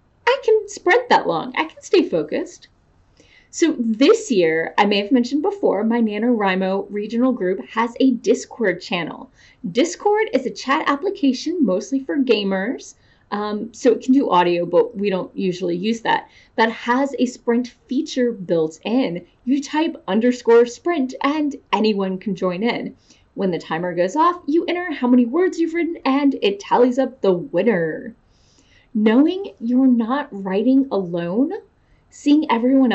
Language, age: English, 30-49